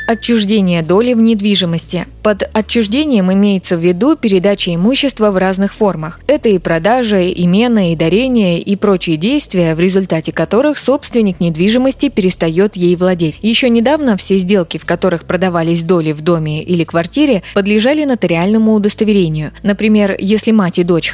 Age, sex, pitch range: 20-39, female, 175-220 Hz